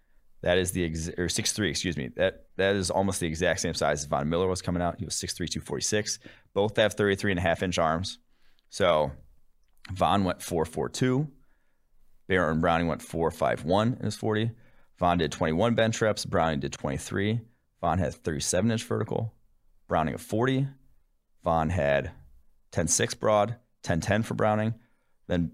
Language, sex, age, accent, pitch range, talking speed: English, male, 30-49, American, 85-110 Hz, 160 wpm